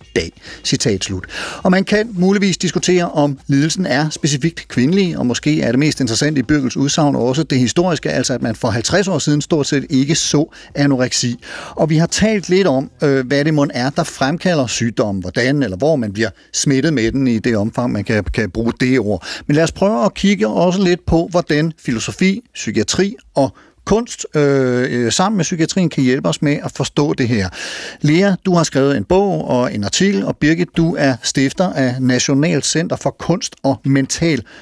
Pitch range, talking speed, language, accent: 125-170 Hz, 200 wpm, Danish, native